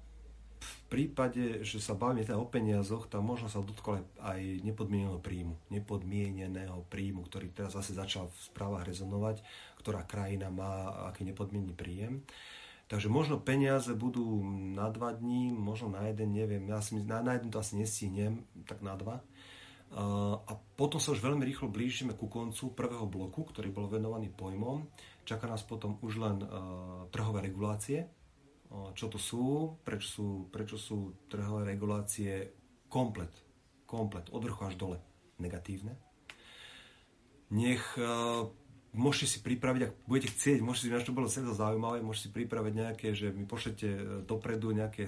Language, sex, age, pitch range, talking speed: Slovak, male, 40-59, 100-120 Hz, 145 wpm